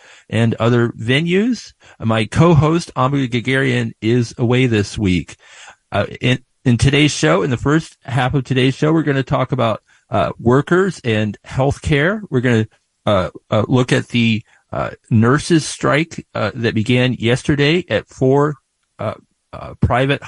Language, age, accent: English, 40-59, American